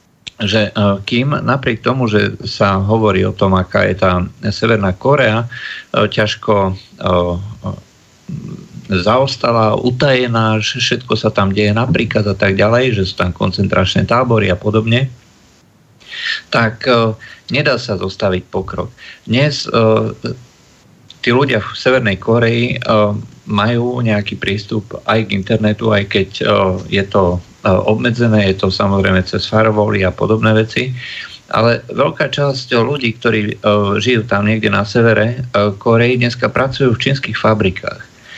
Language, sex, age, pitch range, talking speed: Slovak, male, 50-69, 100-120 Hz, 140 wpm